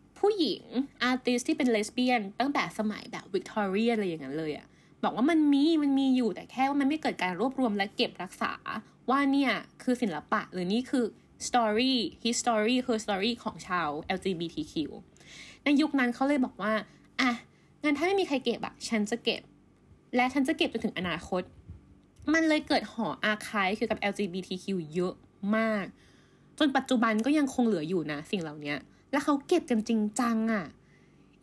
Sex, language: female, Thai